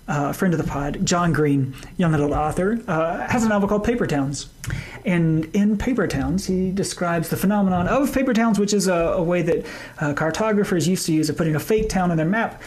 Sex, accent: male, American